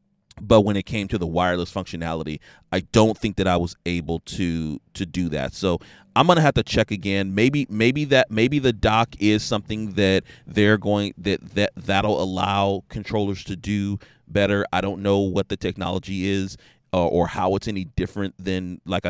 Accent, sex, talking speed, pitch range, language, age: American, male, 190 wpm, 90-110 Hz, English, 30-49